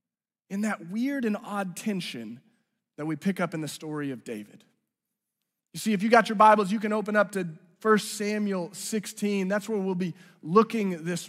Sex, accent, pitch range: male, American, 170-220 Hz